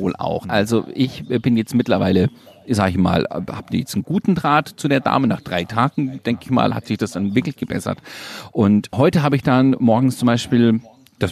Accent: German